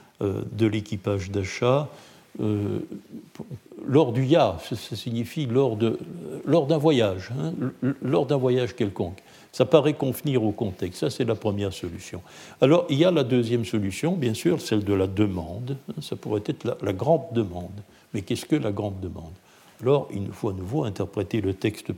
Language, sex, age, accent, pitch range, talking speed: French, male, 60-79, French, 105-145 Hz, 175 wpm